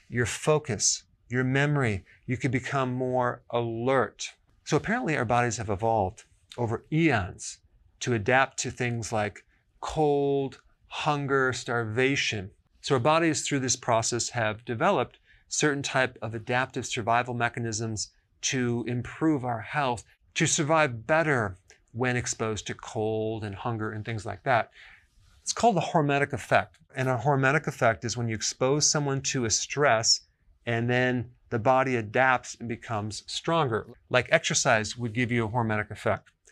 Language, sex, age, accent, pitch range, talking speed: English, male, 40-59, American, 110-140 Hz, 145 wpm